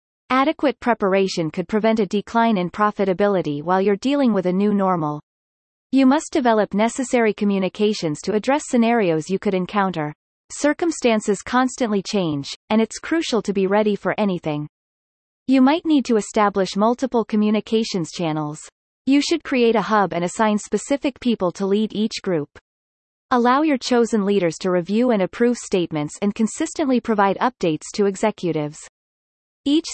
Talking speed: 150 wpm